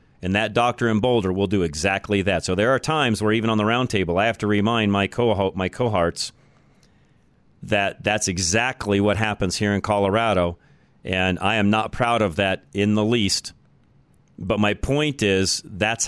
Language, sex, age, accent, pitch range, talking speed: English, male, 40-59, American, 100-120 Hz, 180 wpm